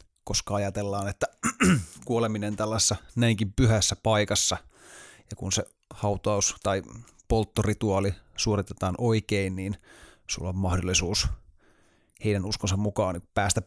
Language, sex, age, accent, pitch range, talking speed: Finnish, male, 30-49, native, 90-110 Hz, 105 wpm